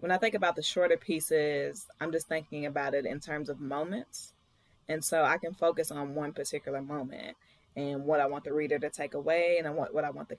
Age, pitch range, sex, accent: 20-39, 145-180 Hz, female, American